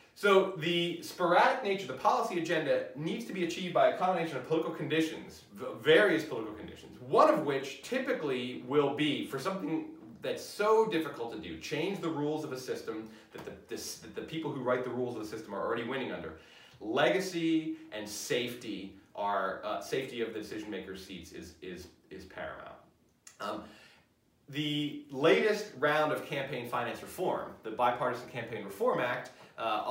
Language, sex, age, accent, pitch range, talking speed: English, male, 30-49, American, 120-170 Hz, 170 wpm